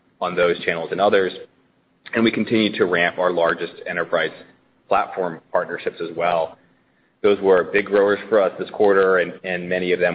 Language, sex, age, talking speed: English, male, 30-49, 175 wpm